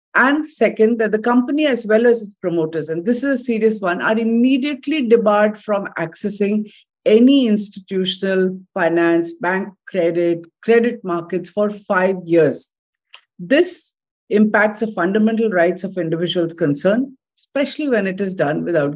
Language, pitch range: English, 170-220 Hz